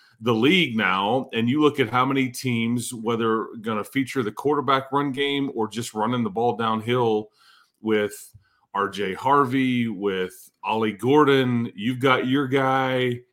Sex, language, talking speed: male, English, 155 wpm